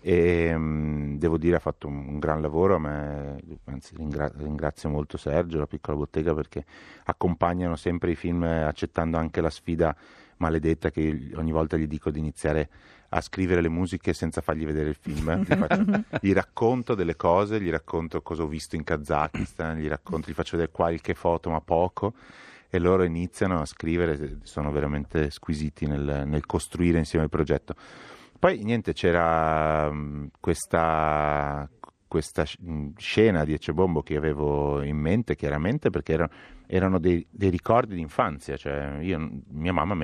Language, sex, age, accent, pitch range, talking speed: Italian, male, 30-49, native, 75-85 Hz, 160 wpm